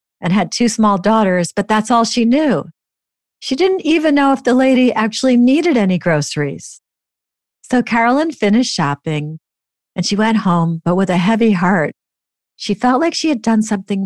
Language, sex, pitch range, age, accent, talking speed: English, female, 160-215 Hz, 50-69, American, 175 wpm